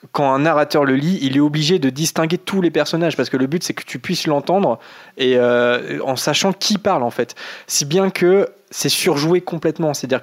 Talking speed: 215 wpm